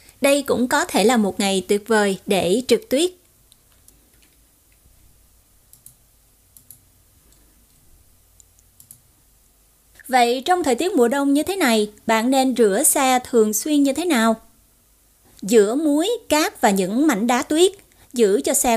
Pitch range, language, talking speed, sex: 205-270 Hz, Vietnamese, 130 wpm, female